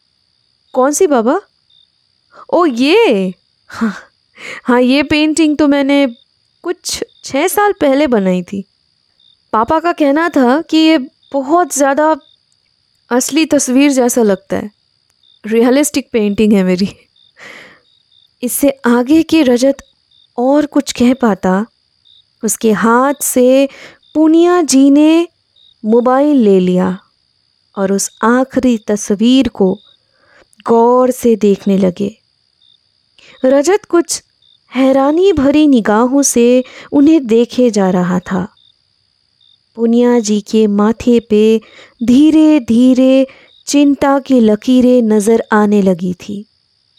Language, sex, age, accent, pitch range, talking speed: Hindi, female, 20-39, native, 210-280 Hz, 110 wpm